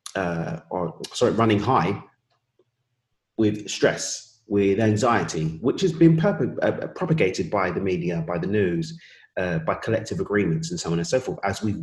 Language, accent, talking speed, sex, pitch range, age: English, British, 165 wpm, male, 105-145 Hz, 30-49